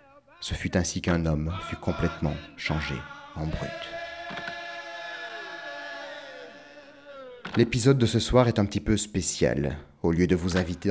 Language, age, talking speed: French, 30-49, 130 wpm